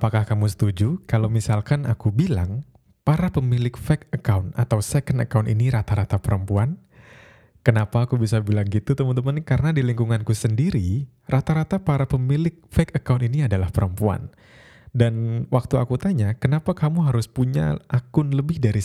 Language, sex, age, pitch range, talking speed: Indonesian, male, 20-39, 110-140 Hz, 145 wpm